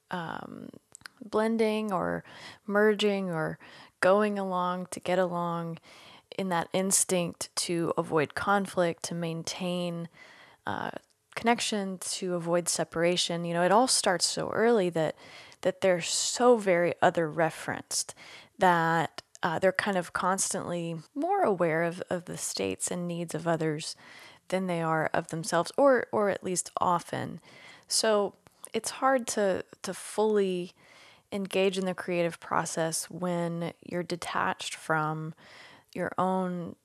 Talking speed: 130 wpm